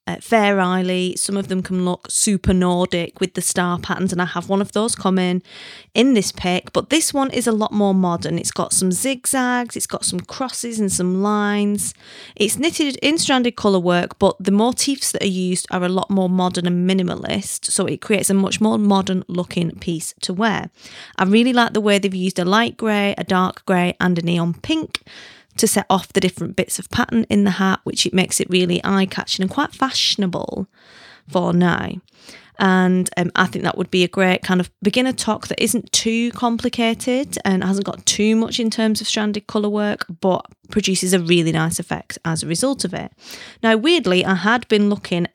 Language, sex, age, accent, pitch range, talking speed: English, female, 30-49, British, 180-220 Hz, 205 wpm